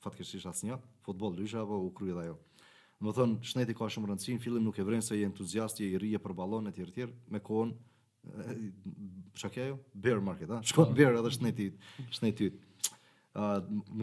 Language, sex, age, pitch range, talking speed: English, male, 20-39, 105-120 Hz, 145 wpm